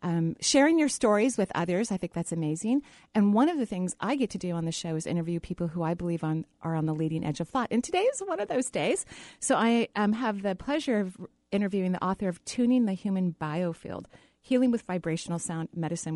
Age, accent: 30-49, American